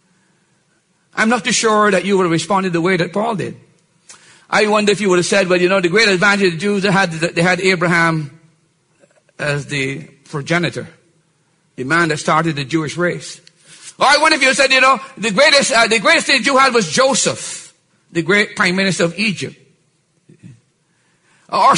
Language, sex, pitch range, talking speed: English, male, 165-240 Hz, 200 wpm